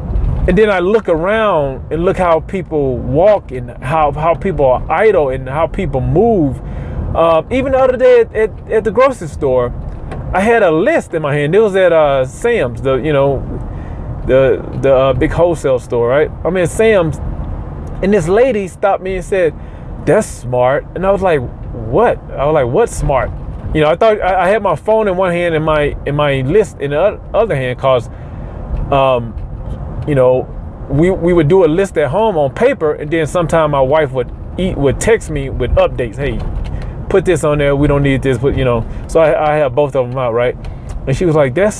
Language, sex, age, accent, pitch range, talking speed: English, male, 30-49, American, 130-210 Hz, 210 wpm